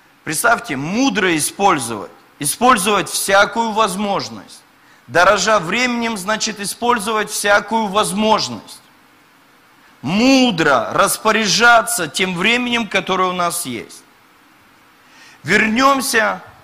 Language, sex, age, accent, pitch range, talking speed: Russian, male, 40-59, native, 170-225 Hz, 75 wpm